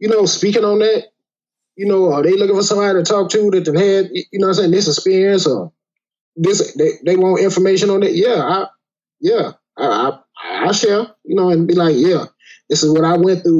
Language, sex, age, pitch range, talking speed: English, male, 20-39, 175-220 Hz, 230 wpm